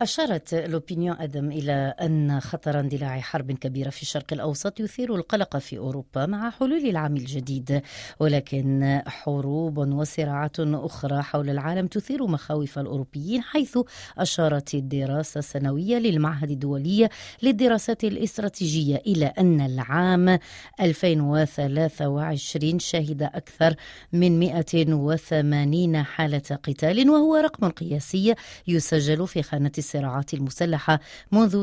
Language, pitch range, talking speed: Arabic, 145-195 Hz, 105 wpm